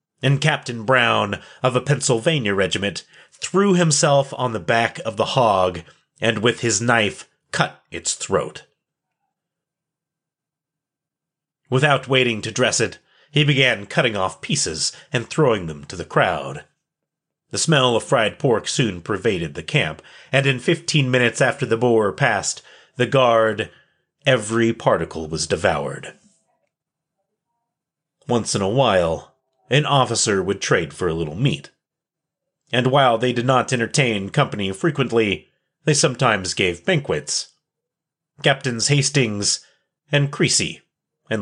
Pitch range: 110-150 Hz